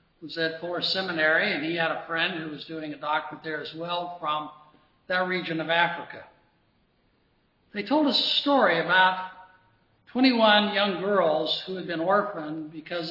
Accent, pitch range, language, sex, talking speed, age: American, 165-210 Hz, English, male, 165 wpm, 60-79